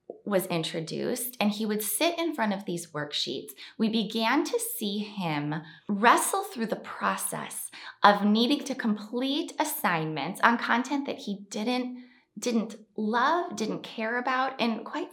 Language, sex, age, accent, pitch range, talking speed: English, female, 20-39, American, 175-245 Hz, 145 wpm